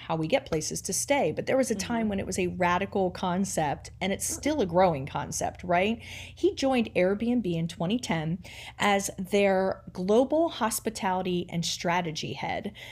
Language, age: English, 30-49